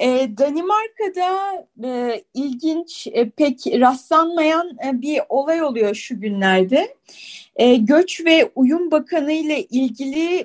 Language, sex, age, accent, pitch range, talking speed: Turkish, female, 30-49, native, 265-360 Hz, 110 wpm